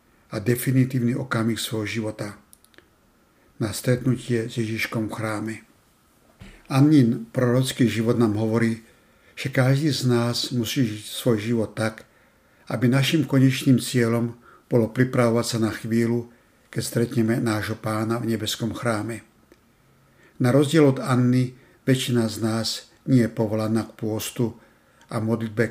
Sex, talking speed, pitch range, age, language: male, 130 wpm, 110-125 Hz, 60-79, Slovak